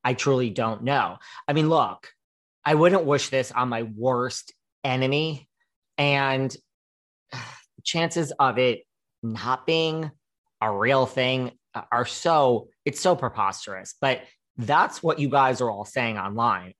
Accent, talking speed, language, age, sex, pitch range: American, 135 wpm, English, 30-49, male, 115-140 Hz